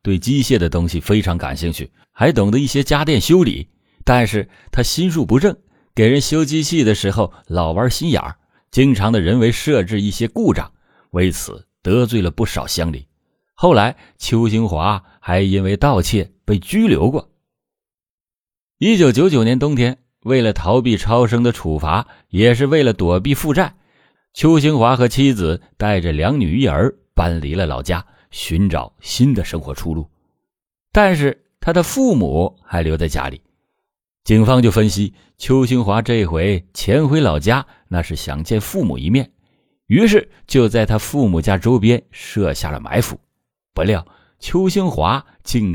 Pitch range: 90-130 Hz